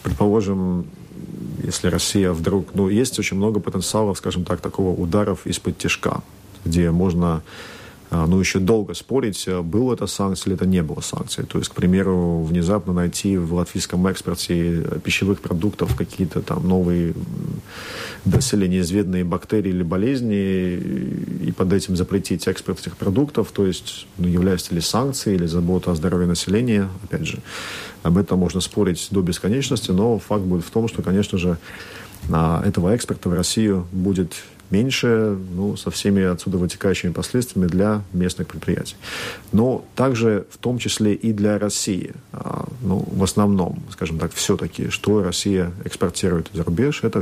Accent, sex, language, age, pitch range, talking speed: native, male, Russian, 40-59, 90-105 Hz, 150 wpm